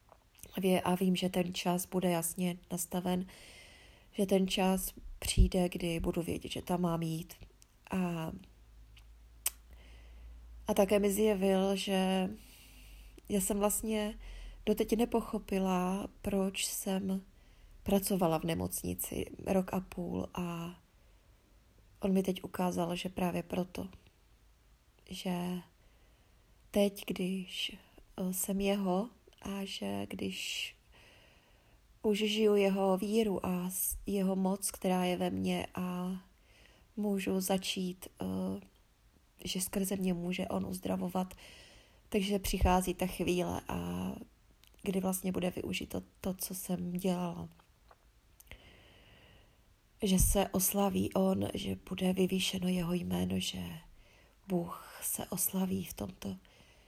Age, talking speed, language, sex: 30-49, 110 wpm, Czech, female